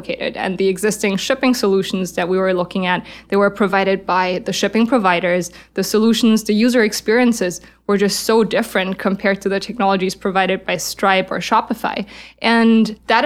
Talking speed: 170 wpm